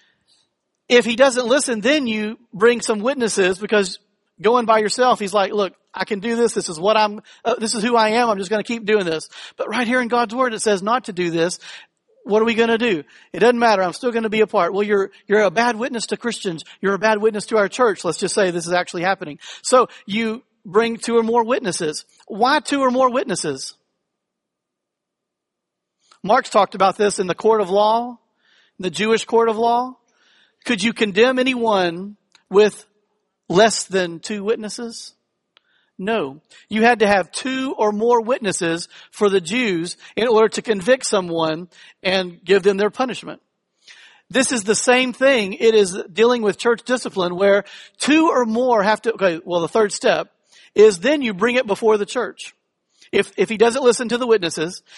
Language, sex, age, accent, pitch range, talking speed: English, male, 40-59, American, 195-240 Hz, 200 wpm